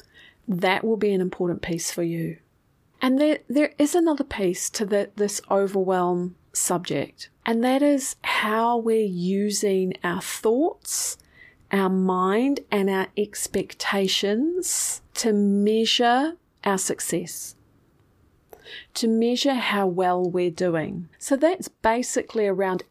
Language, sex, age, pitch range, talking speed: English, female, 40-59, 185-225 Hz, 120 wpm